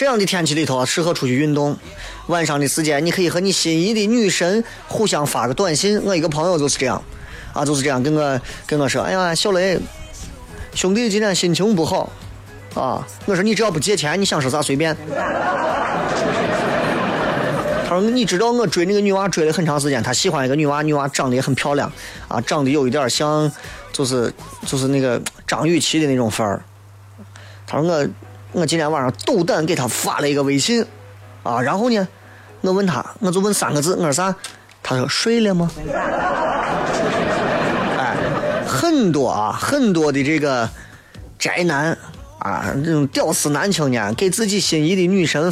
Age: 20-39